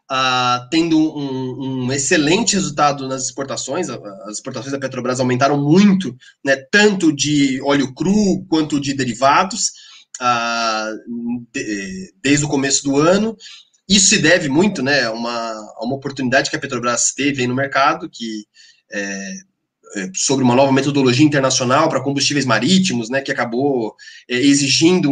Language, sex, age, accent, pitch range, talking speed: Portuguese, male, 20-39, Brazilian, 130-175 Hz, 150 wpm